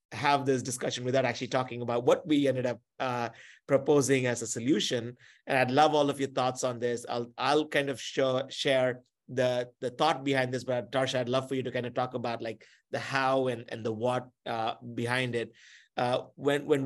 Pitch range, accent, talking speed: 120-135 Hz, Indian, 215 wpm